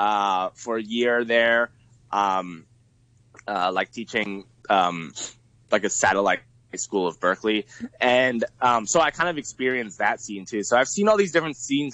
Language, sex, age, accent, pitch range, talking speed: English, male, 20-39, American, 110-125 Hz, 165 wpm